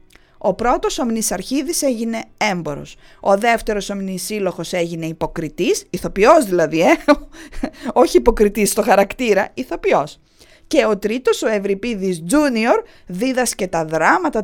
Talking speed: 110 wpm